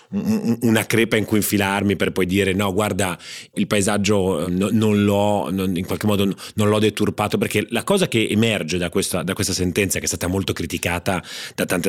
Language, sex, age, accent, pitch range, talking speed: Italian, male, 30-49, native, 90-110 Hz, 195 wpm